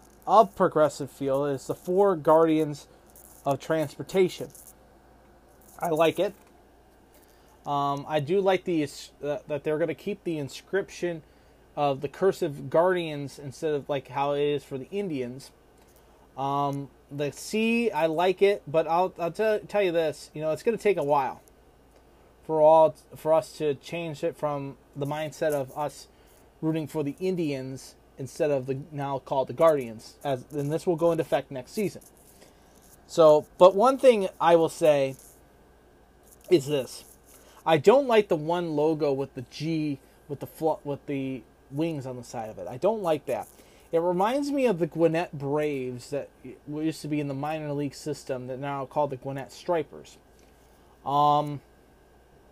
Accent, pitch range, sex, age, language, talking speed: American, 135-170 Hz, male, 20-39, English, 170 wpm